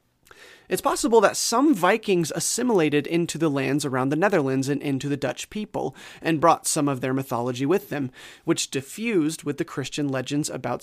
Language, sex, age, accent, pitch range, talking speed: English, male, 30-49, American, 135-180 Hz, 175 wpm